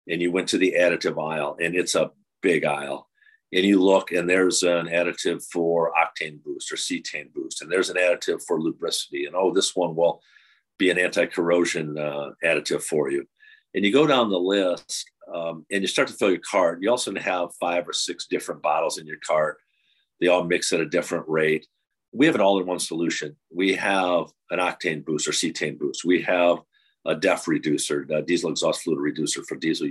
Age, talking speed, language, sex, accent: 50-69, 200 wpm, English, male, American